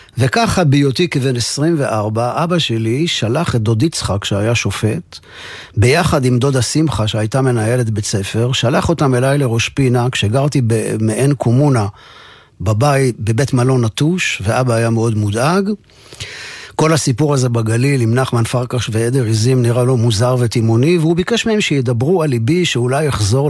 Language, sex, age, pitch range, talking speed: Hebrew, male, 50-69, 105-140 Hz, 150 wpm